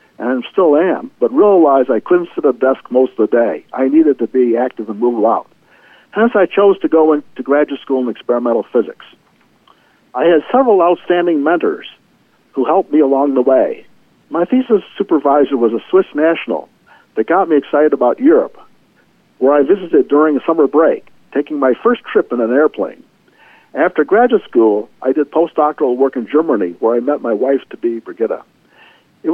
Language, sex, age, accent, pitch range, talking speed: English, male, 60-79, American, 130-205 Hz, 180 wpm